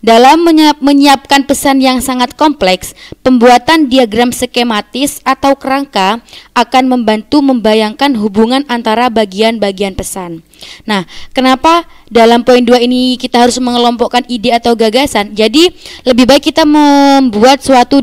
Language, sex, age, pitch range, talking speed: Indonesian, female, 20-39, 215-270 Hz, 125 wpm